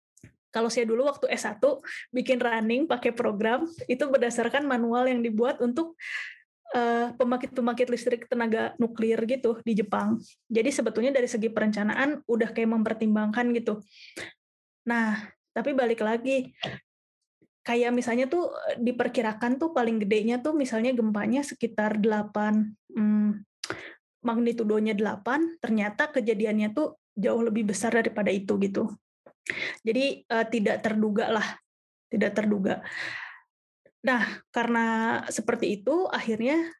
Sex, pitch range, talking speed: female, 220-250 Hz, 115 wpm